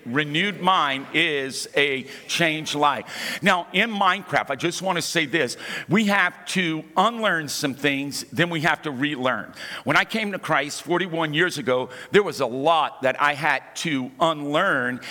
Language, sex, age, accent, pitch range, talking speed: English, male, 50-69, American, 150-195 Hz, 170 wpm